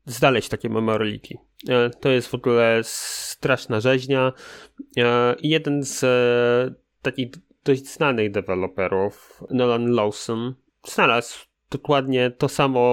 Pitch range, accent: 110-140 Hz, native